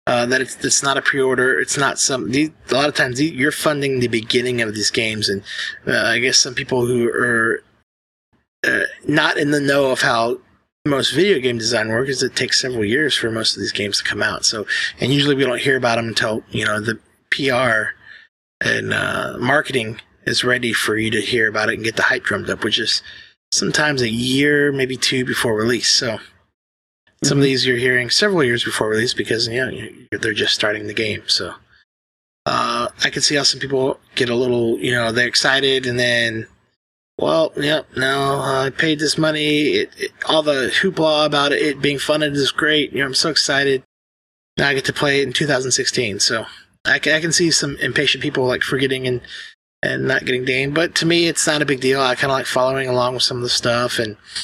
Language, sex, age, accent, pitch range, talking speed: English, male, 20-39, American, 120-145 Hz, 225 wpm